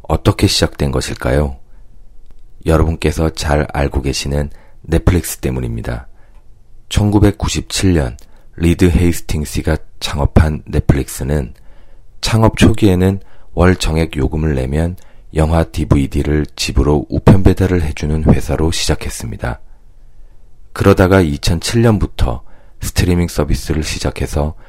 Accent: native